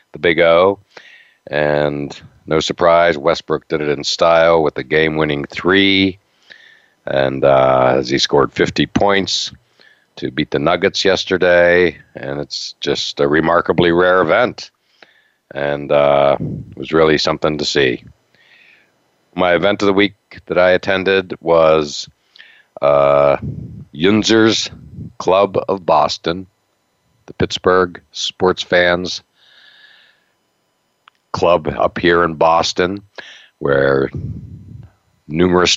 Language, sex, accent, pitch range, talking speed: English, male, American, 75-95 Hz, 110 wpm